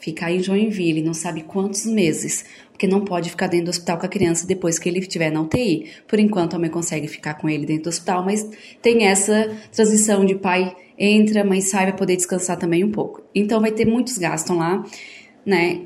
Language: Portuguese